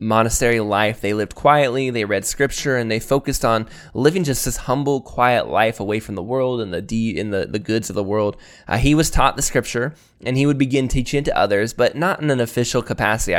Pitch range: 110-130 Hz